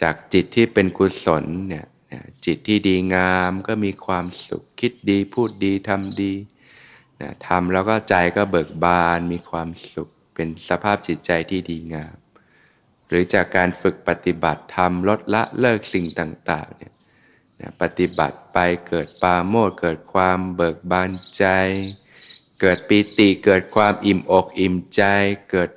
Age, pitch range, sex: 20-39, 85-100 Hz, male